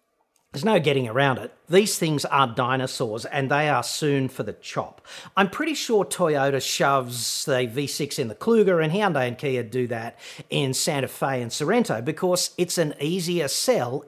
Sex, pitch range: male, 130-180 Hz